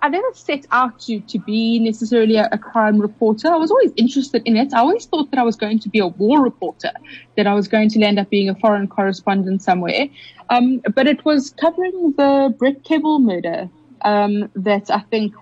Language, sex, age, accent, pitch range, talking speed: English, female, 30-49, British, 200-245 Hz, 215 wpm